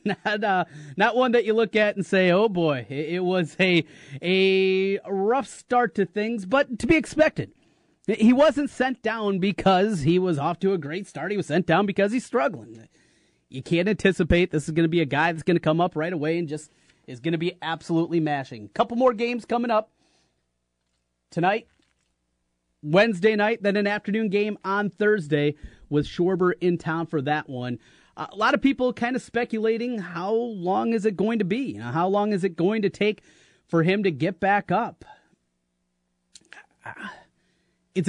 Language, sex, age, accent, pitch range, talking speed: English, male, 30-49, American, 150-210 Hz, 185 wpm